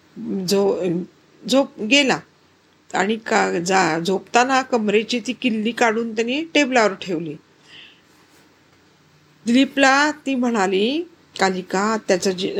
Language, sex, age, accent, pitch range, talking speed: Marathi, female, 50-69, native, 195-245 Hz, 85 wpm